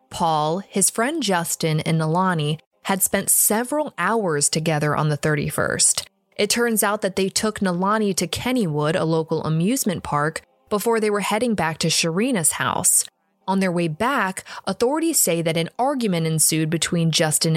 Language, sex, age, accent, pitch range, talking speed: English, female, 20-39, American, 160-220 Hz, 160 wpm